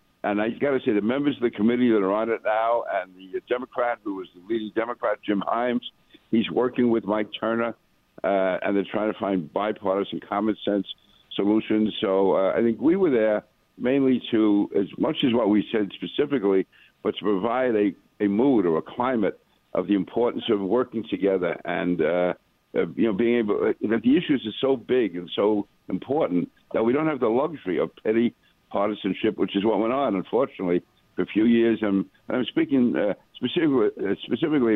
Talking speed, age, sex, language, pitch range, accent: 195 wpm, 60-79, male, English, 95-120 Hz, American